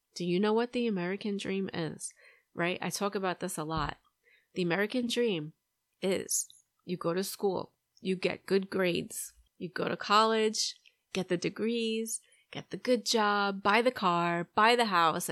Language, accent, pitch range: English, American, 180-240 Hz